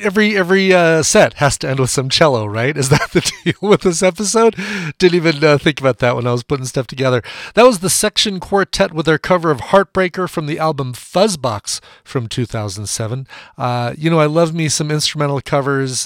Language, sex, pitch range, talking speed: English, male, 125-180 Hz, 205 wpm